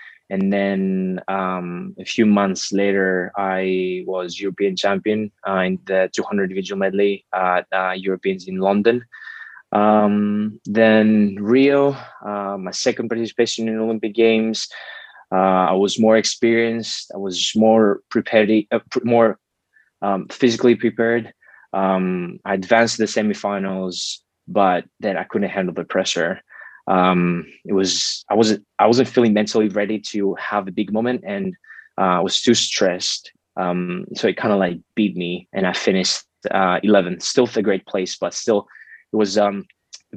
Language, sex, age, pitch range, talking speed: English, male, 20-39, 95-110 Hz, 155 wpm